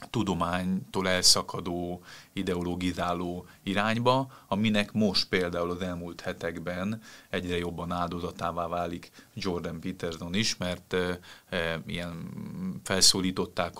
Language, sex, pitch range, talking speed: Hungarian, male, 90-100 Hz, 90 wpm